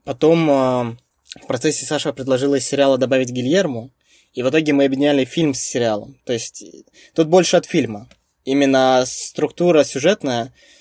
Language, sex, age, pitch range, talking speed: Russian, male, 20-39, 120-145 Hz, 140 wpm